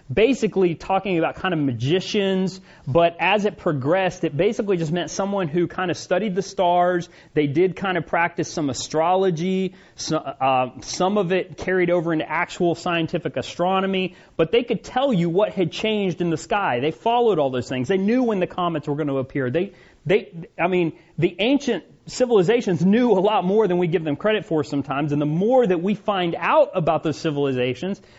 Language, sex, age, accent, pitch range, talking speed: English, male, 30-49, American, 165-195 Hz, 195 wpm